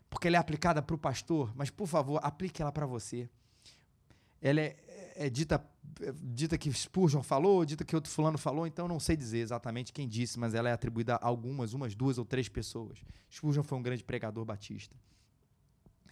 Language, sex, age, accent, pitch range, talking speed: Portuguese, male, 20-39, Brazilian, 110-135 Hz, 195 wpm